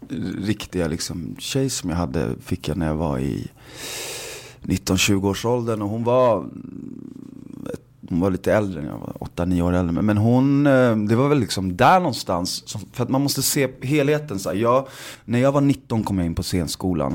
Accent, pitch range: native, 90-125 Hz